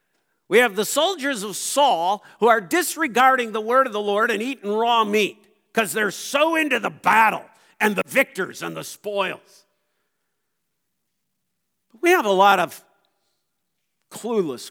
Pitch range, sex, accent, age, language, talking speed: 185-245 Hz, male, American, 50-69, English, 145 wpm